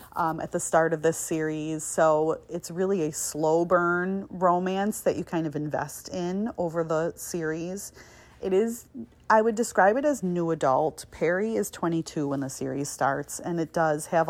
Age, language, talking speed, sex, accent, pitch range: 30-49, English, 180 wpm, female, American, 150-185 Hz